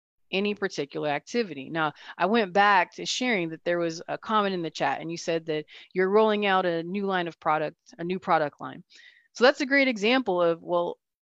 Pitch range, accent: 170-220 Hz, American